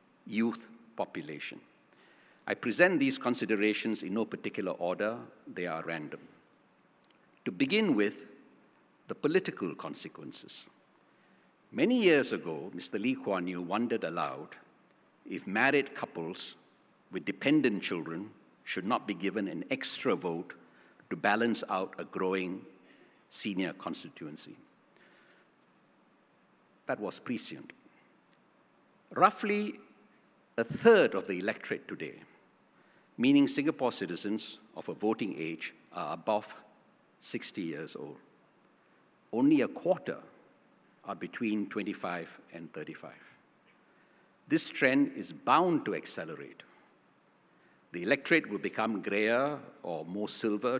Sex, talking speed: male, 110 wpm